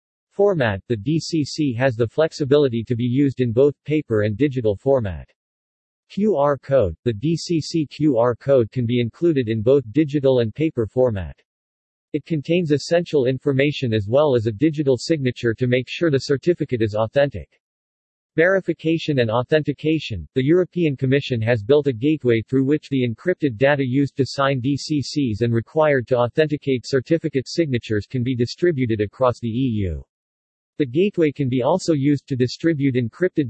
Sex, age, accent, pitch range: male, 50-69, American, 120-150 Hz